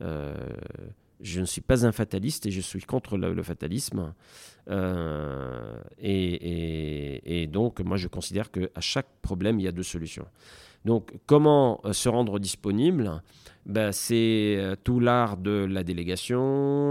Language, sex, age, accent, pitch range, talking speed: French, male, 40-59, French, 90-120 Hz, 155 wpm